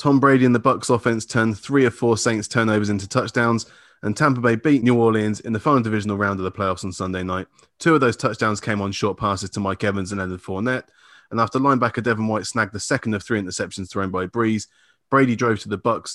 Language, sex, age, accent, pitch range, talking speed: English, male, 20-39, British, 100-120 Hz, 240 wpm